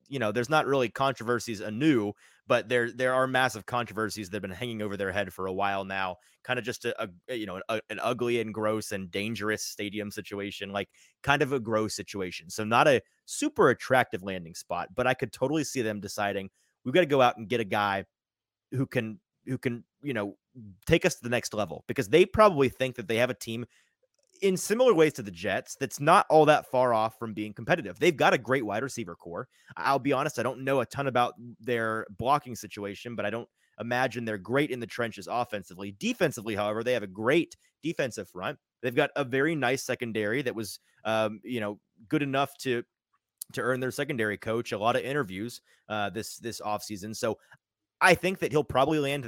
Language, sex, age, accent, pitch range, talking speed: English, male, 30-49, American, 105-135 Hz, 215 wpm